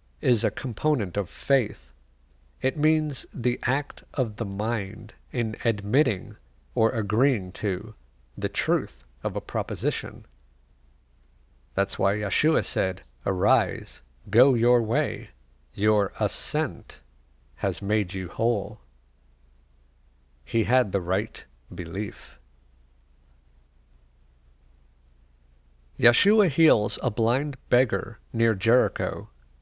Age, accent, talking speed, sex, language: 50-69, American, 95 wpm, male, English